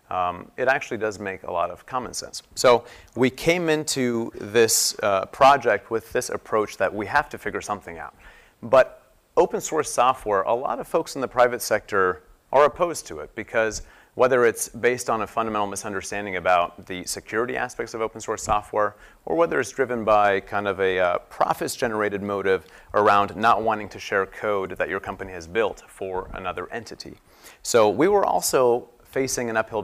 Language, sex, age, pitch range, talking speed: English, male, 30-49, 100-125 Hz, 185 wpm